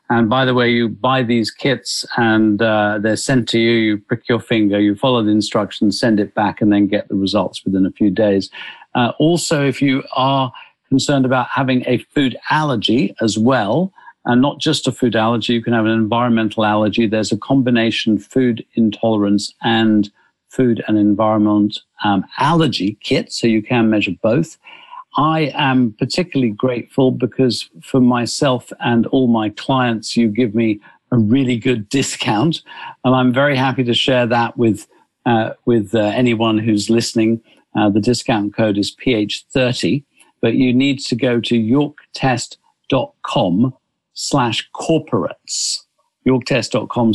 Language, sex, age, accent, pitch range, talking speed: English, male, 50-69, British, 110-130 Hz, 160 wpm